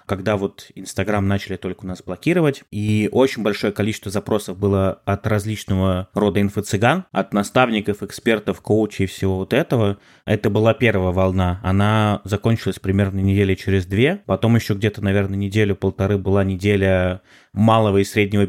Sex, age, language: male, 20-39, Russian